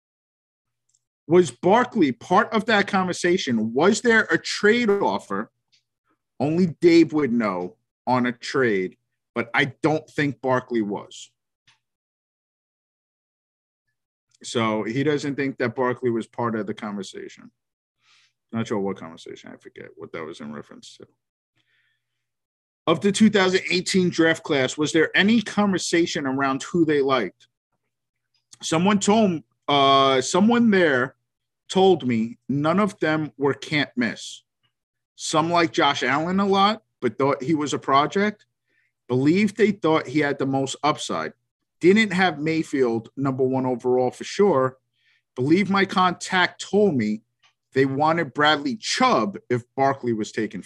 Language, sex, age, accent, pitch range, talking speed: English, male, 50-69, American, 125-185 Hz, 135 wpm